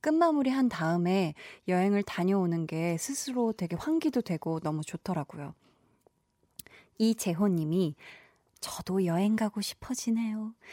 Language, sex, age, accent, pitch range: Korean, female, 20-39, native, 175-245 Hz